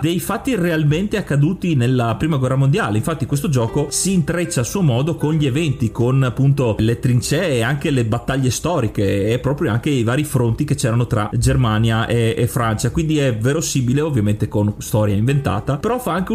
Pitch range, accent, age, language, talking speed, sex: 120-165 Hz, native, 30-49, Italian, 185 wpm, male